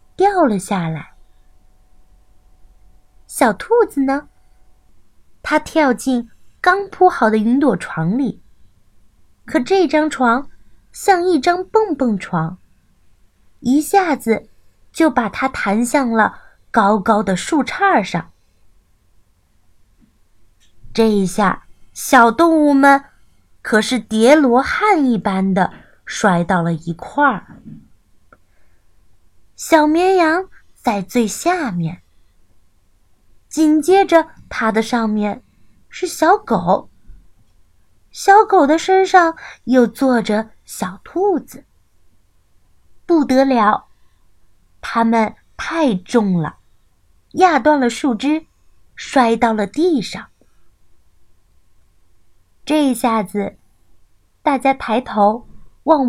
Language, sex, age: Chinese, female, 30-49